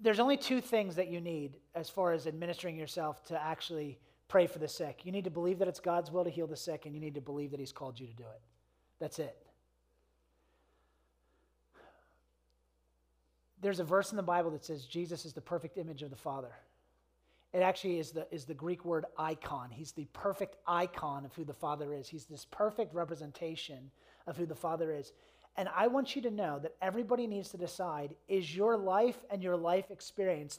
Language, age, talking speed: English, 30-49, 205 wpm